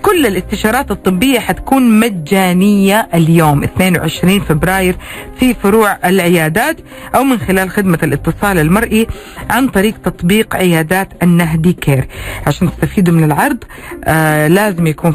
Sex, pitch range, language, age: female, 170-215 Hz, Arabic, 40-59